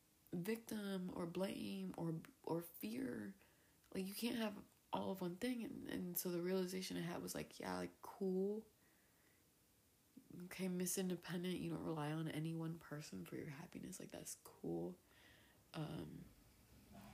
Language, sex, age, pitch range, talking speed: English, female, 20-39, 145-200 Hz, 145 wpm